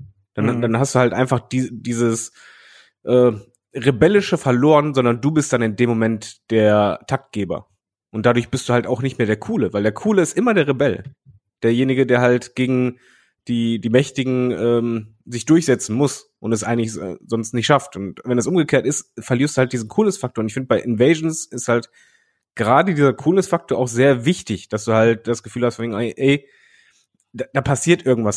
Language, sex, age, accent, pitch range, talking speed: German, male, 30-49, German, 115-140 Hz, 190 wpm